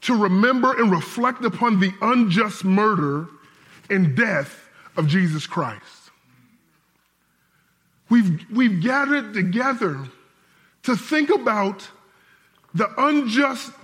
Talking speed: 95 wpm